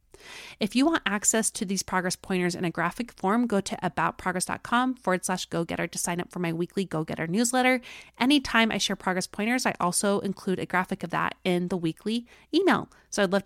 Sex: female